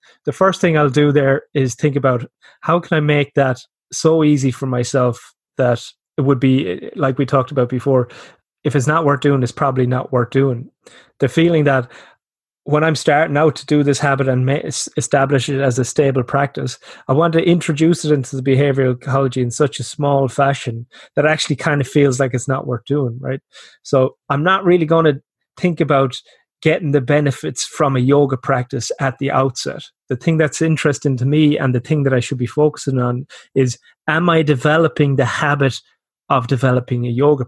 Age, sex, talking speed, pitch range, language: 30-49, male, 200 wpm, 125-150 Hz, English